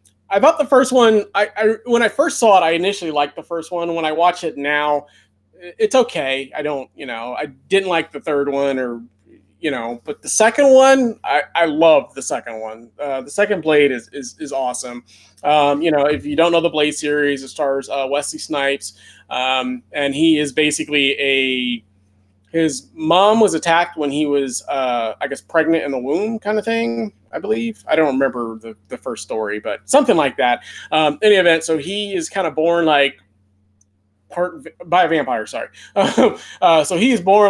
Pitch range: 140-175 Hz